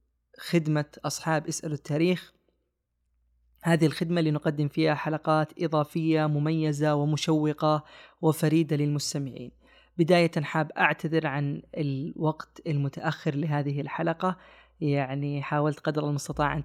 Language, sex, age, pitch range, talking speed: Arabic, female, 20-39, 145-165 Hz, 100 wpm